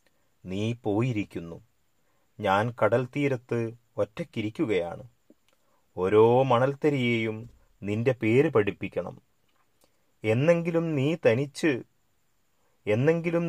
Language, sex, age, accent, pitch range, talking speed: Malayalam, male, 30-49, native, 105-135 Hz, 65 wpm